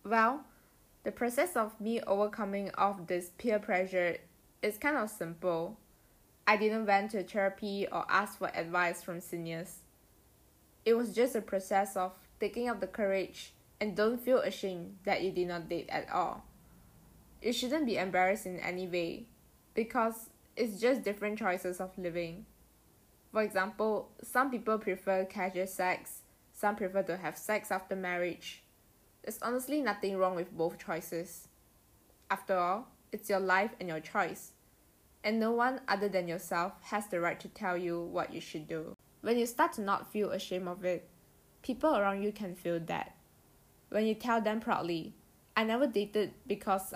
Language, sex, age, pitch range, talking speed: English, female, 10-29, 175-215 Hz, 165 wpm